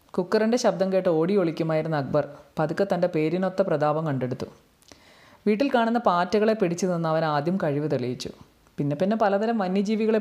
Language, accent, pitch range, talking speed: Malayalam, native, 150-205 Hz, 140 wpm